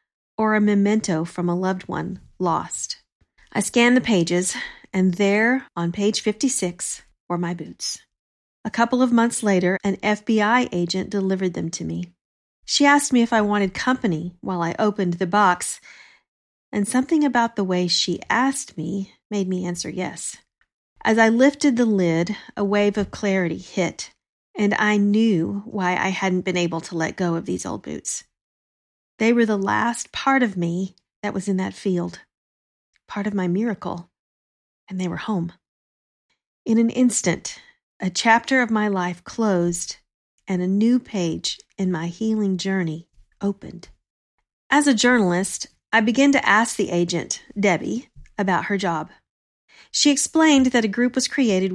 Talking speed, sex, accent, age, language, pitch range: 160 wpm, female, American, 40-59, English, 175-225 Hz